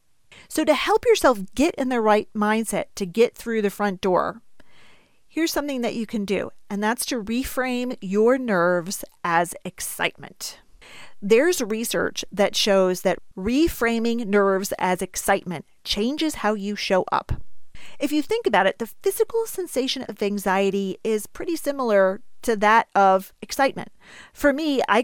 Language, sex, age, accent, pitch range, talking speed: English, female, 40-59, American, 205-280 Hz, 150 wpm